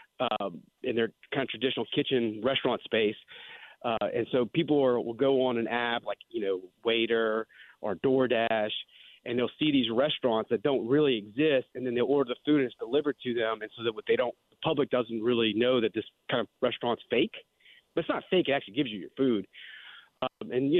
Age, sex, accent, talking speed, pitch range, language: 40-59, male, American, 210 wpm, 115-150 Hz, English